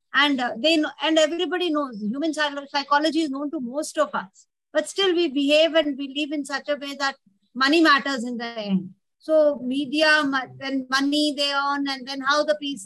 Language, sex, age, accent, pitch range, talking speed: English, female, 50-69, Indian, 235-295 Hz, 190 wpm